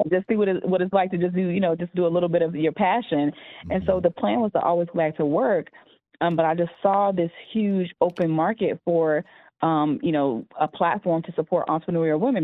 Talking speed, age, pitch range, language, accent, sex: 245 wpm, 20-39, 160-185 Hz, English, American, female